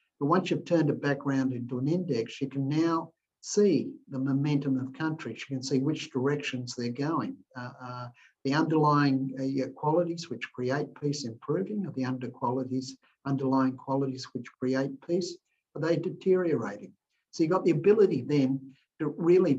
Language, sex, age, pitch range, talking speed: English, male, 50-69, 130-165 Hz, 165 wpm